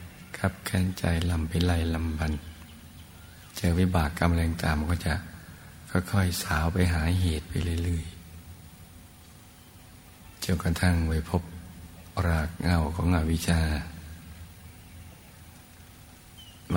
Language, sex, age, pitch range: Thai, male, 60-79, 85-90 Hz